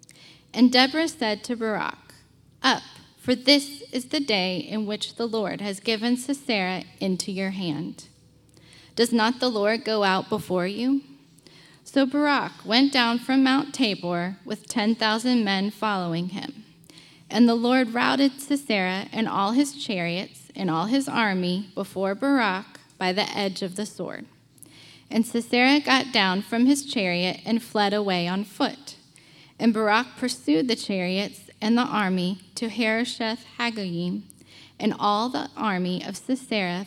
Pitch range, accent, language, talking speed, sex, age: 180-240 Hz, American, English, 150 wpm, female, 10-29